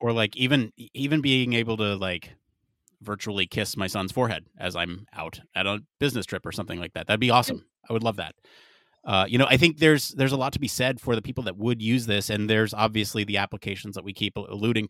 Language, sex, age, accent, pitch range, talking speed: English, male, 30-49, American, 100-125 Hz, 240 wpm